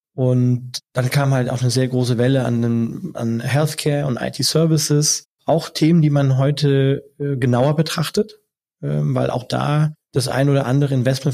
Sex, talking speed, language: male, 155 wpm, German